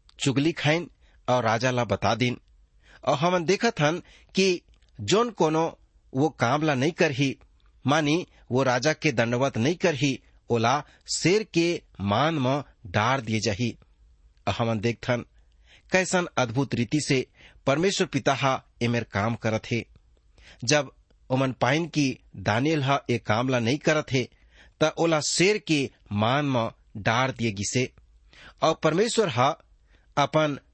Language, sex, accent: English, male, Indian